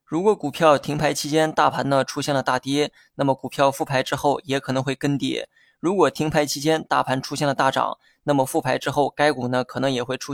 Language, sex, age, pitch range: Chinese, male, 20-39, 130-150 Hz